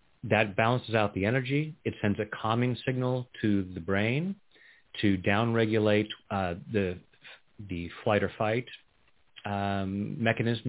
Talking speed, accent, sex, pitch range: 135 wpm, American, male, 100-125 Hz